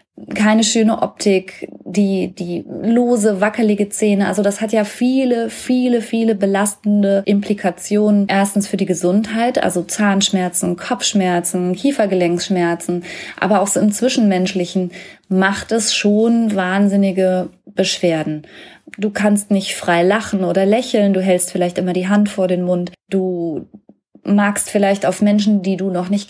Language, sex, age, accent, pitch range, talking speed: German, female, 20-39, German, 180-215 Hz, 135 wpm